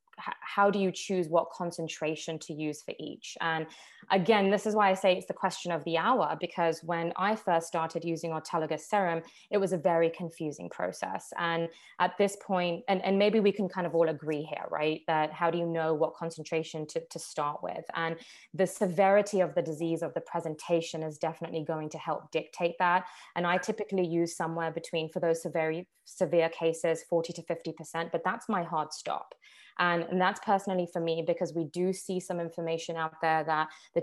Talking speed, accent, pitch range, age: 200 wpm, British, 160-190 Hz, 20-39